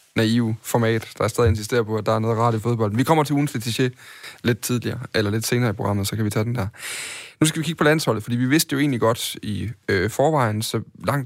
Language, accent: Danish, native